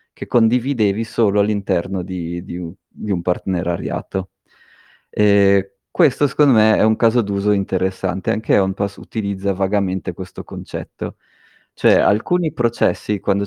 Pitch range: 95-105 Hz